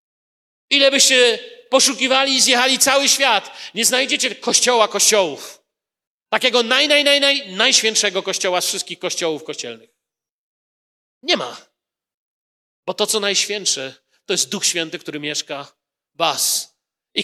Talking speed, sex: 125 wpm, male